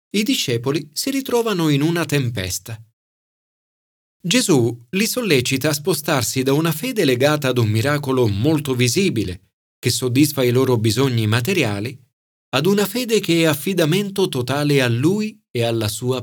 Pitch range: 110-165 Hz